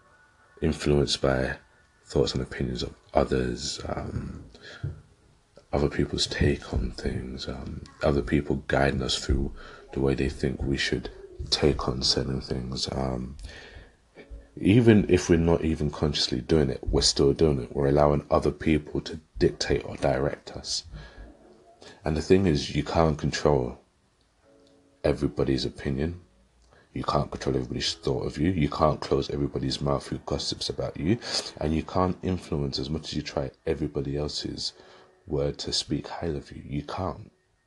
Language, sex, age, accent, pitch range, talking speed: English, male, 30-49, British, 70-85 Hz, 150 wpm